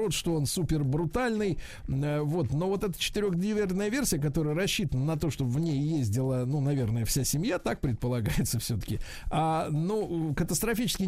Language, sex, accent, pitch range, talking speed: Russian, male, native, 140-180 Hz, 150 wpm